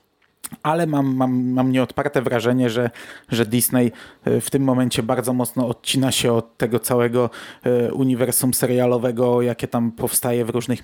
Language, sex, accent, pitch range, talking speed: Polish, male, native, 125-145 Hz, 145 wpm